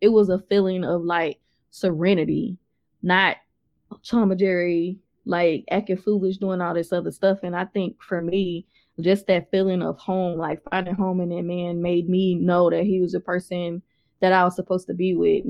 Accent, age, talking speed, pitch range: American, 20-39, 185 wpm, 175-200 Hz